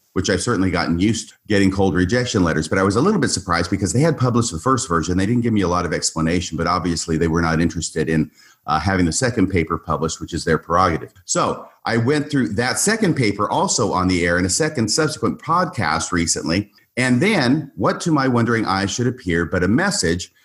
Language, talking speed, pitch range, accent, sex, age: English, 230 wpm, 90-125 Hz, American, male, 40-59